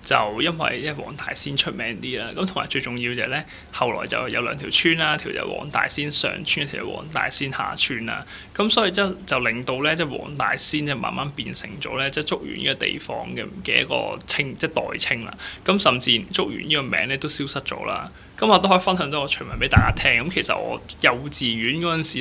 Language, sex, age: Chinese, male, 20-39